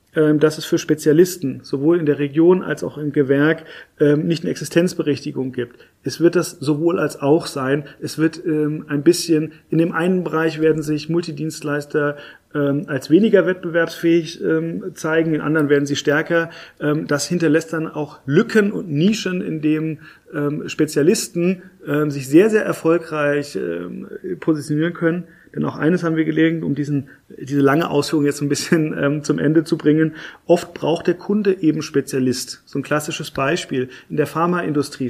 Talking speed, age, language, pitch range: 155 wpm, 30-49, German, 145-170 Hz